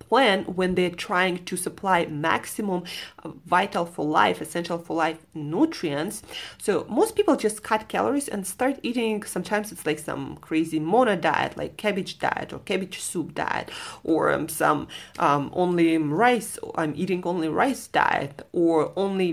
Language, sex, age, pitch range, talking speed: English, female, 30-49, 160-220 Hz, 155 wpm